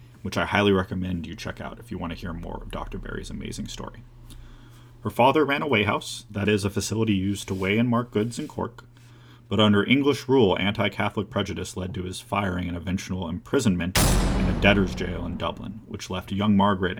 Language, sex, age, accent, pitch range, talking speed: English, male, 30-49, American, 90-115 Hz, 205 wpm